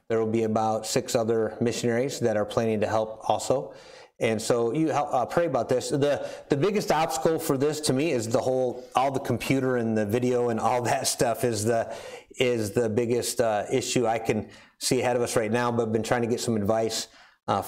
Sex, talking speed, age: male, 225 wpm, 30-49